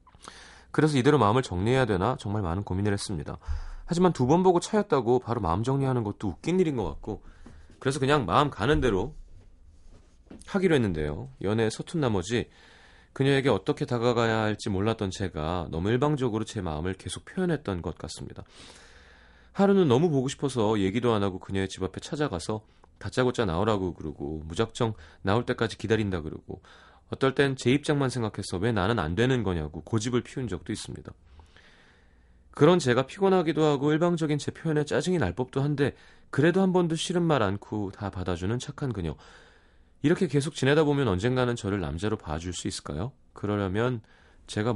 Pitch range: 85-130 Hz